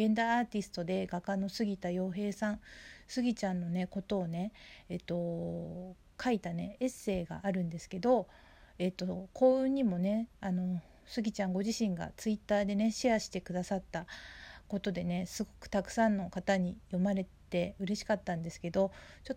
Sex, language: female, Japanese